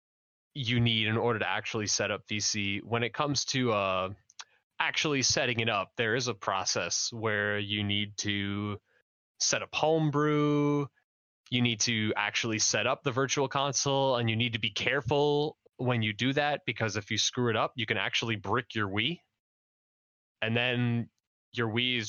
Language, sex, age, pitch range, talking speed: English, male, 20-39, 105-130 Hz, 175 wpm